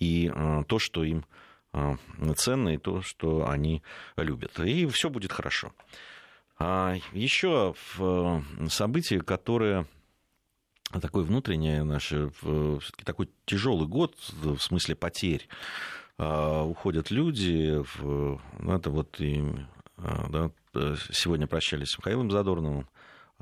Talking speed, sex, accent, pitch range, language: 100 wpm, male, native, 70-90 Hz, Russian